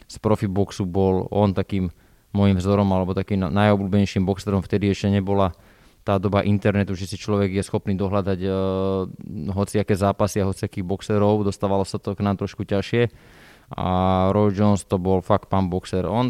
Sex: male